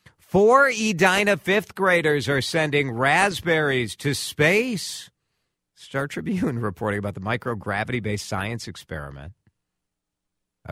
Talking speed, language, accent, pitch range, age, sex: 100 wpm, English, American, 90-125 Hz, 50-69, male